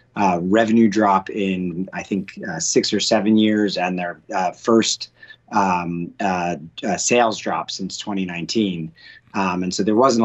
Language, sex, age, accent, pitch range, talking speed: English, male, 30-49, American, 95-115 Hz, 160 wpm